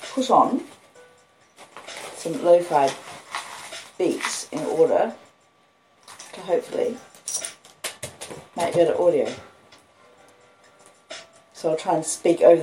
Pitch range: 145-240 Hz